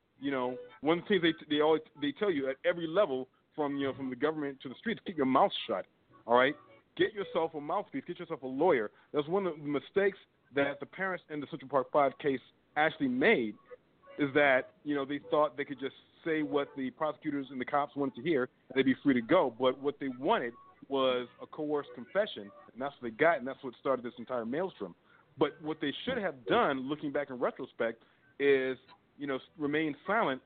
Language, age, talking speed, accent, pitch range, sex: English, 40-59, 220 wpm, American, 130-160 Hz, male